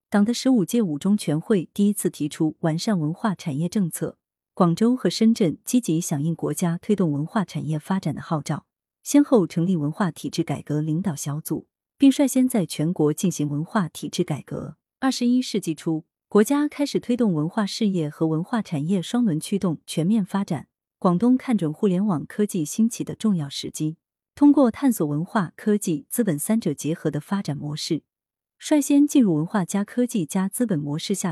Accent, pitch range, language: native, 155-220 Hz, Chinese